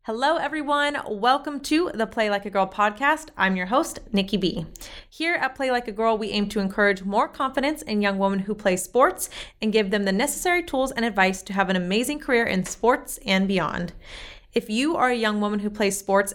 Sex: female